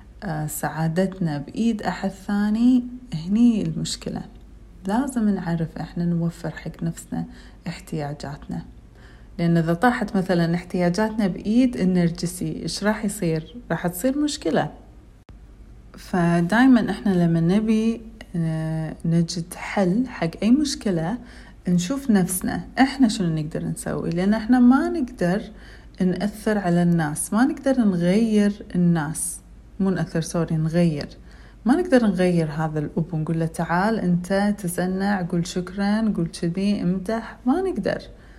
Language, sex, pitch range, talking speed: Arabic, female, 170-225 Hz, 115 wpm